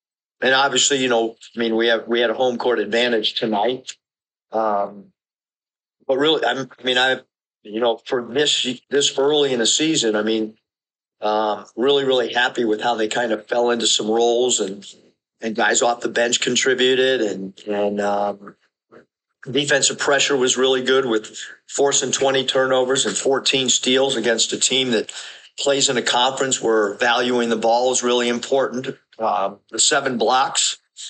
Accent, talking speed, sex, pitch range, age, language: American, 165 wpm, male, 115-135 Hz, 50-69, English